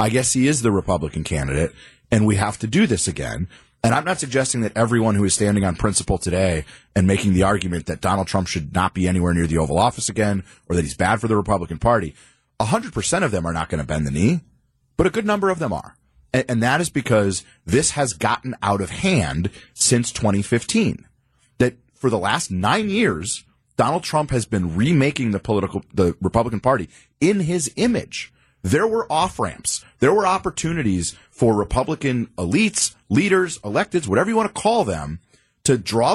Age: 30-49